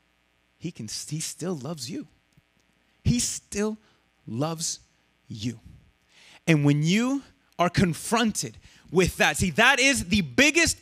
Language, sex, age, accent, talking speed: English, male, 30-49, American, 115 wpm